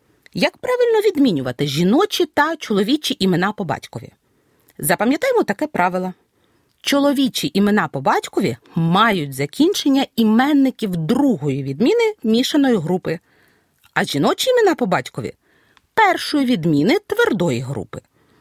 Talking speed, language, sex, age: 100 wpm, Ukrainian, female, 40-59